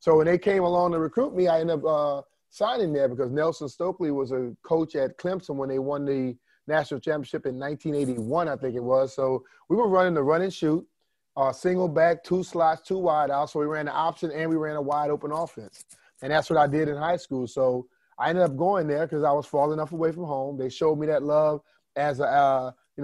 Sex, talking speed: male, 240 wpm